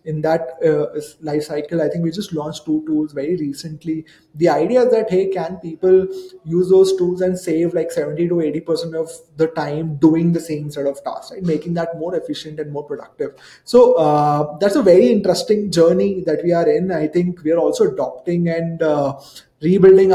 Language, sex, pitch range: English, male, 150-180 Hz